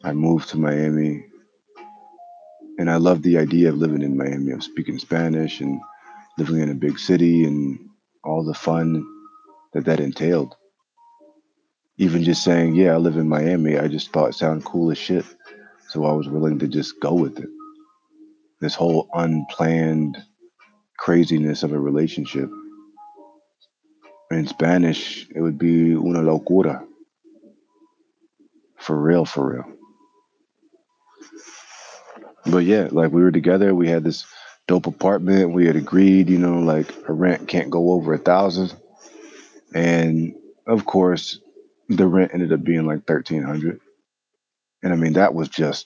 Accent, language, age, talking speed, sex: American, English, 30-49, 145 wpm, male